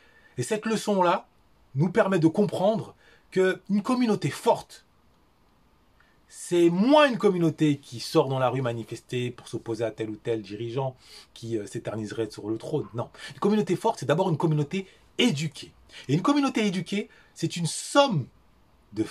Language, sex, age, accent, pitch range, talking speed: French, male, 30-49, French, 125-210 Hz, 155 wpm